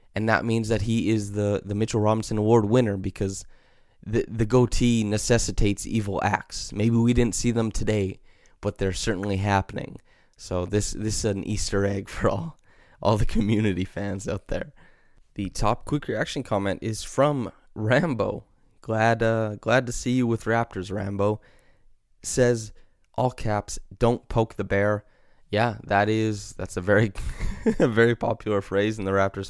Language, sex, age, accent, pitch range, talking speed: English, male, 20-39, American, 95-110 Hz, 165 wpm